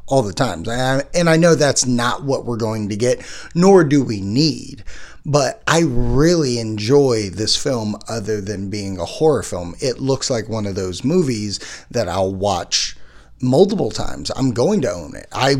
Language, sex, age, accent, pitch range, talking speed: English, male, 30-49, American, 110-155 Hz, 180 wpm